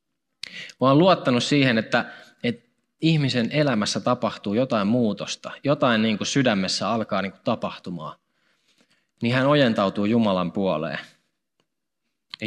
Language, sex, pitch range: Finnish, male, 100-130 Hz